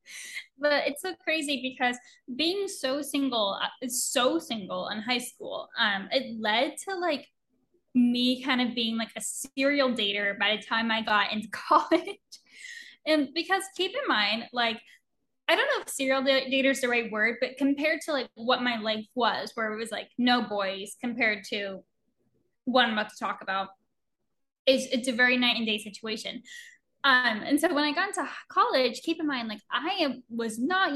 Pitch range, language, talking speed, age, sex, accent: 225-280 Hz, English, 185 wpm, 10-29, female, American